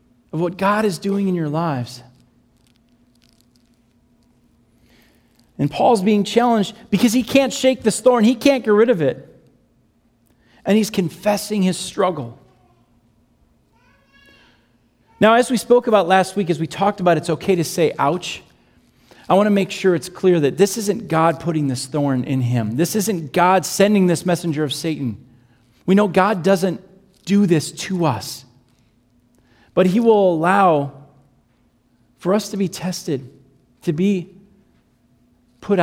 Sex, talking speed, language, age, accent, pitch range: male, 150 wpm, English, 40-59, American, 120-200 Hz